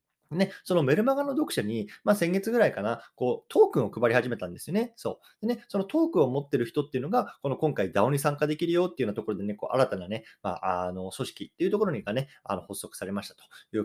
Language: Japanese